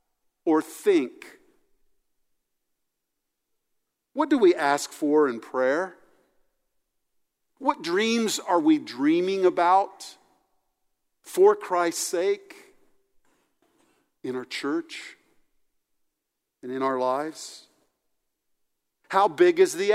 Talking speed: 85 wpm